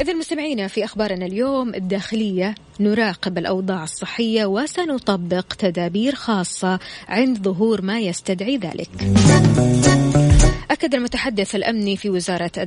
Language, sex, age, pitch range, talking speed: Arabic, female, 20-39, 185-225 Hz, 105 wpm